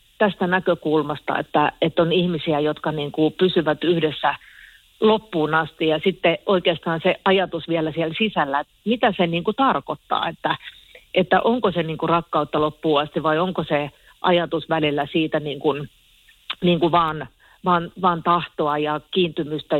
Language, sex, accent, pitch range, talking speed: Finnish, female, native, 155-185 Hz, 160 wpm